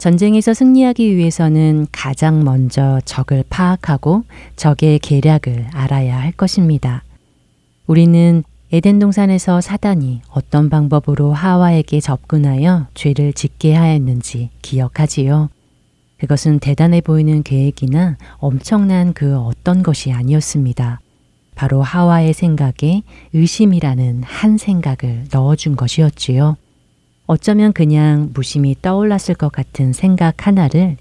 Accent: native